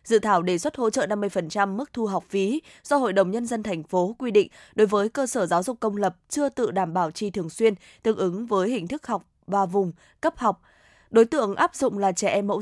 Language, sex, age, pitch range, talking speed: Vietnamese, female, 20-39, 190-230 Hz, 250 wpm